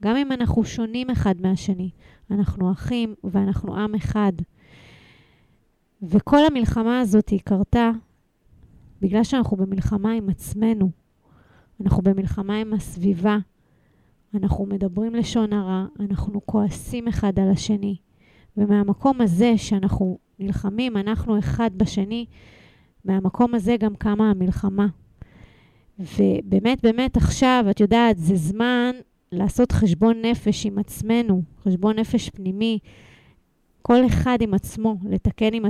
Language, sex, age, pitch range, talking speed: Hebrew, female, 20-39, 195-225 Hz, 110 wpm